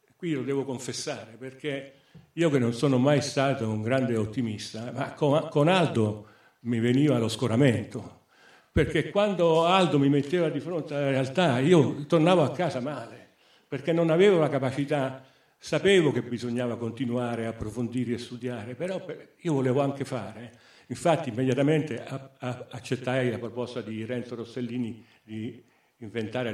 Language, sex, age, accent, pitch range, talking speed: Italian, male, 50-69, native, 115-145 Hz, 140 wpm